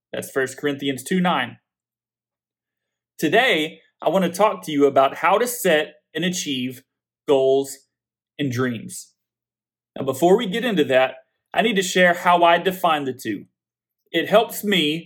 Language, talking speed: English, 150 wpm